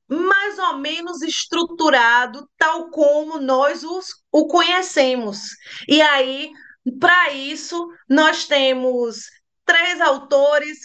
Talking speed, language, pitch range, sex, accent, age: 95 wpm, Portuguese, 255-315 Hz, female, Brazilian, 20-39